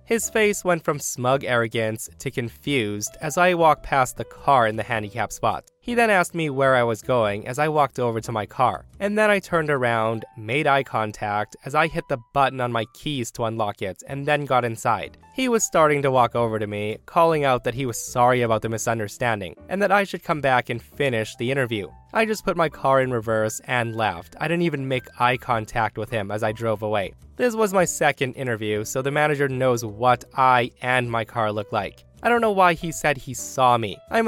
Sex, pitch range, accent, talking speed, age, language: male, 115-155 Hz, American, 230 wpm, 20-39, English